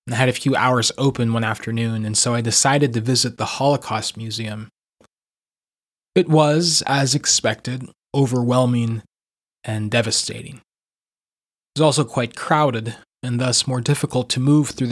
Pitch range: 115-140 Hz